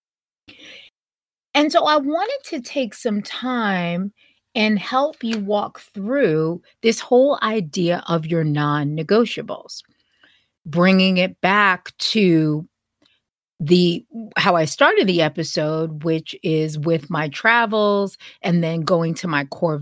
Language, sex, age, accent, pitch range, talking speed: English, female, 30-49, American, 165-225 Hz, 120 wpm